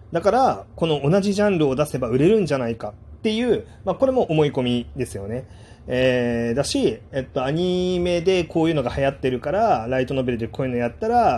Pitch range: 115-170 Hz